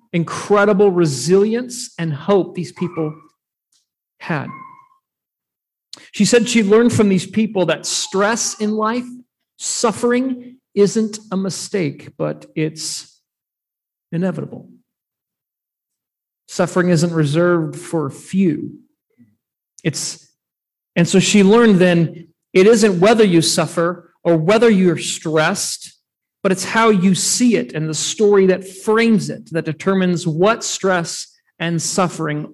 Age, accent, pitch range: 40-59, American, 160-215 Hz